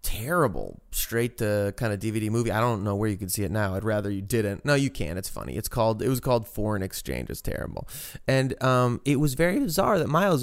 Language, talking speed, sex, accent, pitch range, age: English, 240 wpm, male, American, 105-130 Hz, 20-39